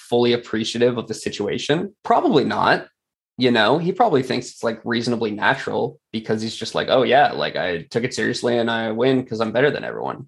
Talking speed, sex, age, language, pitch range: 205 wpm, male, 20-39, English, 110-125 Hz